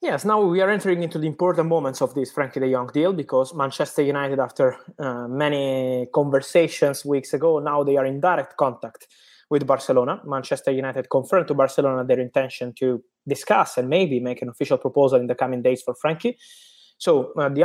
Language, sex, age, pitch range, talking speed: English, male, 20-39, 130-175 Hz, 190 wpm